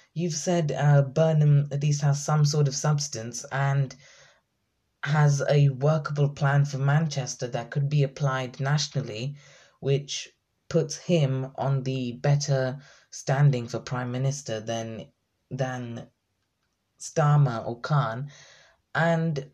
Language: English